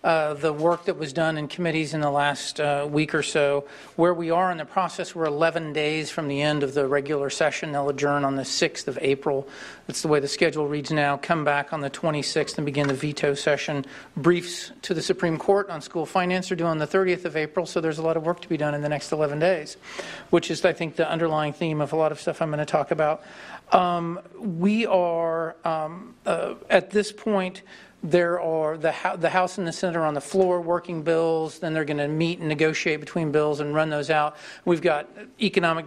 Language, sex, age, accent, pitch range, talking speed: English, male, 40-59, American, 150-180 Hz, 235 wpm